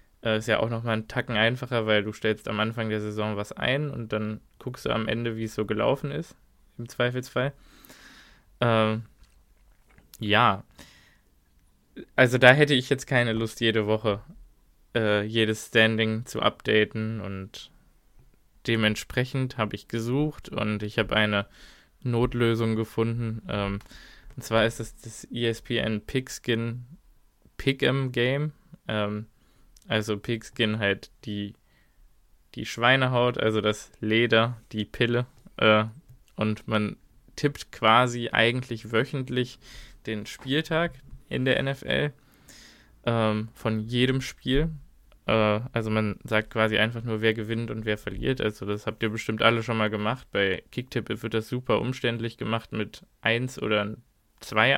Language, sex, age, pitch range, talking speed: German, male, 20-39, 110-125 Hz, 135 wpm